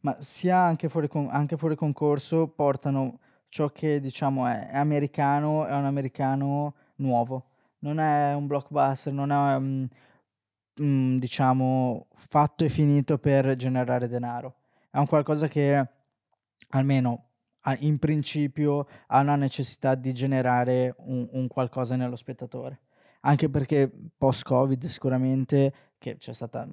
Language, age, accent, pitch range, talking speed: Italian, 20-39, native, 130-145 Hz, 130 wpm